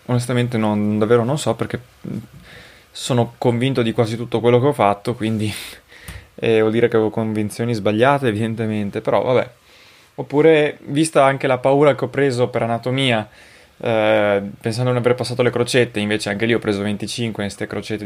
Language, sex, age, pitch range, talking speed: Italian, male, 20-39, 105-120 Hz, 175 wpm